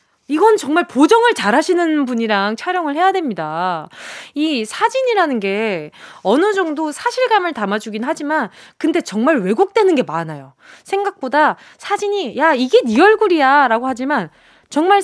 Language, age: Korean, 20-39